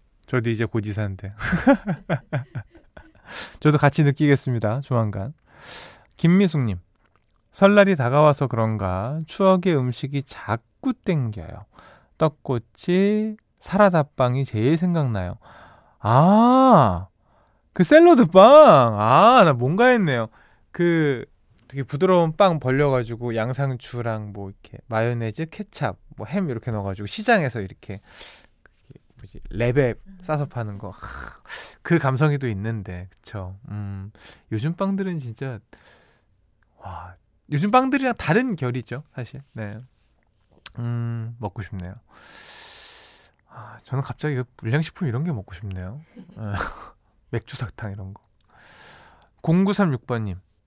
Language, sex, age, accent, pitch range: Korean, male, 20-39, native, 110-170 Hz